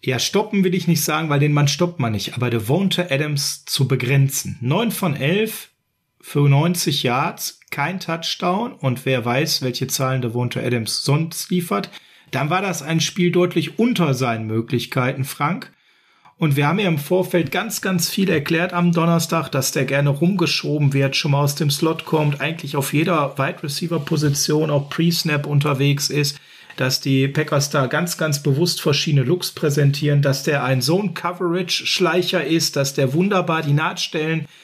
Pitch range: 140-175 Hz